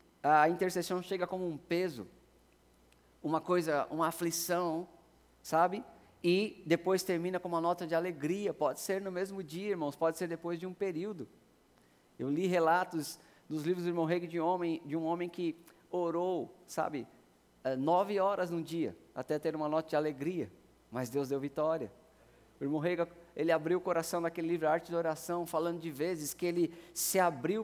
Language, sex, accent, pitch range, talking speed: Portuguese, male, Brazilian, 160-185 Hz, 170 wpm